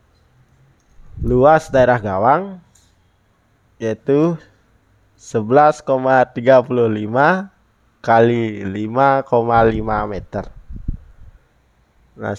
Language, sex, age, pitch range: Indonesian, male, 20-39, 100-130 Hz